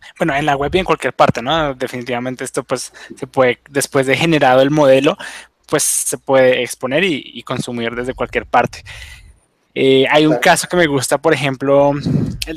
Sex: male